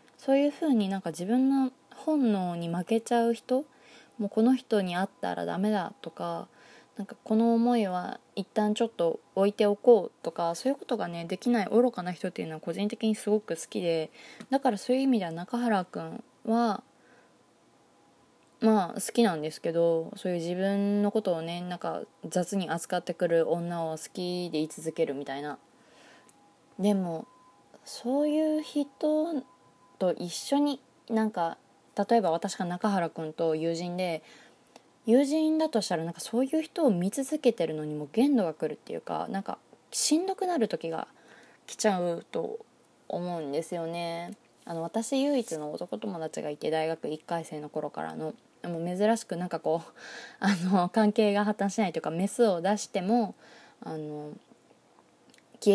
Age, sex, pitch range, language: 20-39, female, 170-240 Hz, Japanese